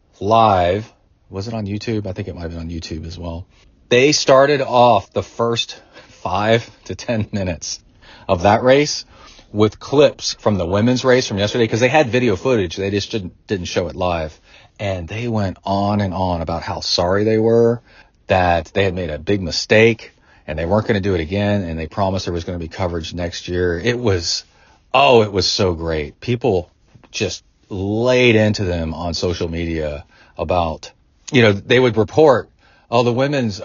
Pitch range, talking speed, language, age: 90-125 Hz, 195 wpm, English, 40-59